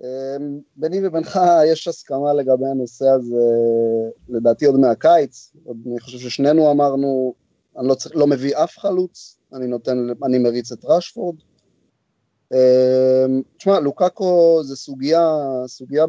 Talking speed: 130 wpm